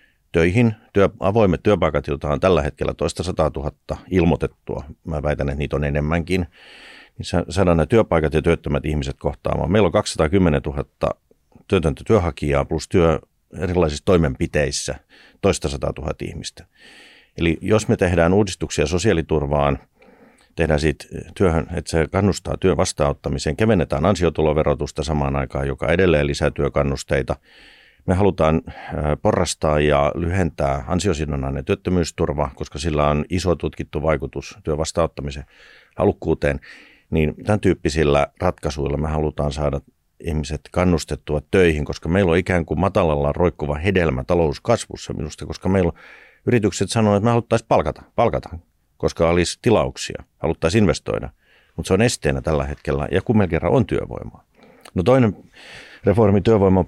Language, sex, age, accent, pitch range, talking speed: Finnish, male, 50-69, native, 75-90 Hz, 130 wpm